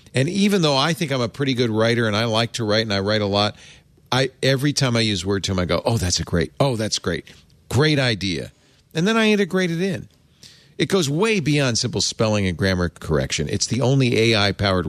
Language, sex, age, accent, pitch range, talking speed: English, male, 40-59, American, 105-150 Hz, 225 wpm